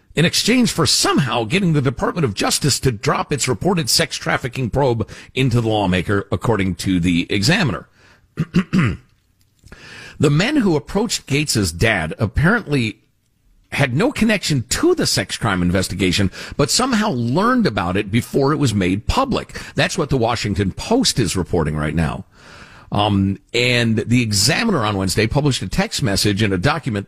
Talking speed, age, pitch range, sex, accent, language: 155 wpm, 50-69, 100-160 Hz, male, American, English